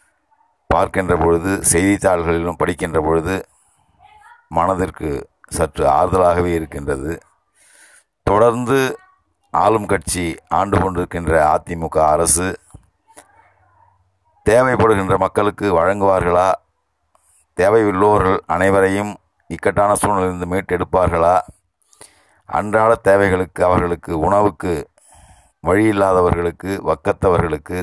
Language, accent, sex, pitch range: Tamil, native, male, 85-100 Hz